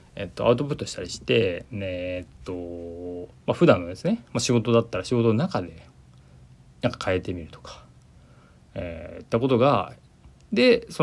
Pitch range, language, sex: 90-125 Hz, Japanese, male